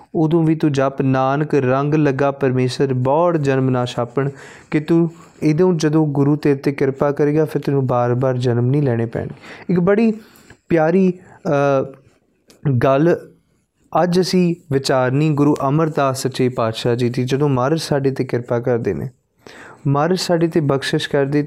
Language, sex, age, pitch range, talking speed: Punjabi, male, 30-49, 135-175 Hz, 150 wpm